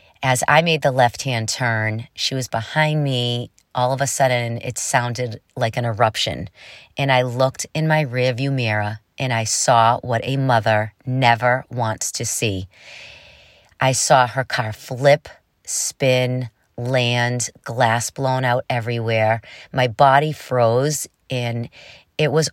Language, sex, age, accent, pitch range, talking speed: English, female, 30-49, American, 115-135 Hz, 140 wpm